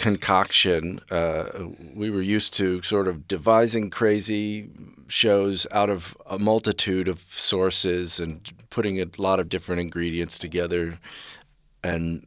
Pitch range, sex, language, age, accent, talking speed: 85-95 Hz, male, English, 40-59, American, 125 wpm